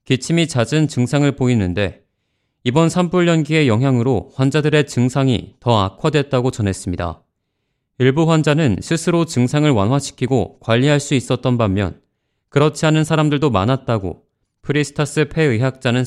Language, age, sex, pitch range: Korean, 30-49, male, 115-150 Hz